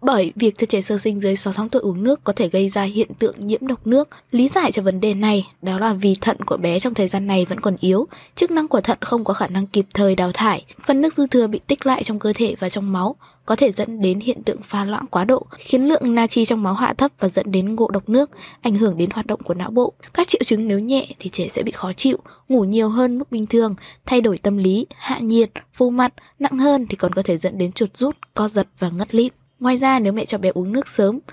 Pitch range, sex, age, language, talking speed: 195-250 Hz, female, 20-39, Vietnamese, 280 wpm